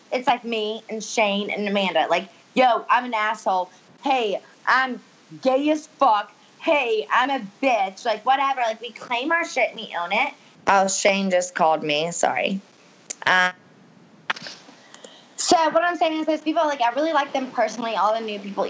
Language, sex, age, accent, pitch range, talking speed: English, female, 20-39, American, 200-275 Hz, 180 wpm